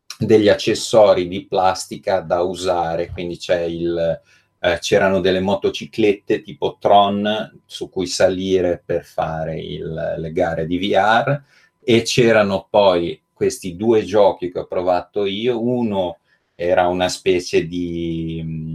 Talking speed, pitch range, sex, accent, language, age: 130 wpm, 85-95 Hz, male, native, Italian, 30-49